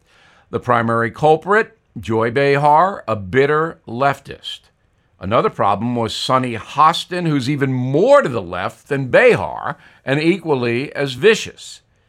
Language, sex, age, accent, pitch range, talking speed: English, male, 50-69, American, 120-155 Hz, 125 wpm